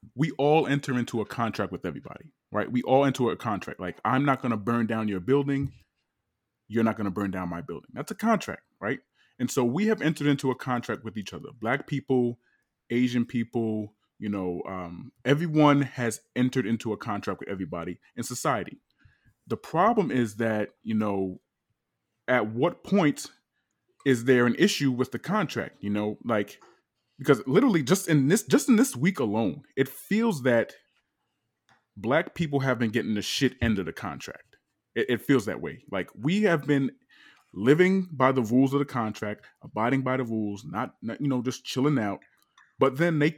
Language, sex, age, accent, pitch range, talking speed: English, male, 20-39, American, 115-150 Hz, 190 wpm